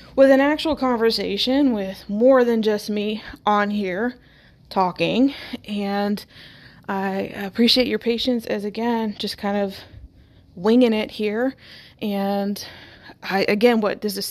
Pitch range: 205-245 Hz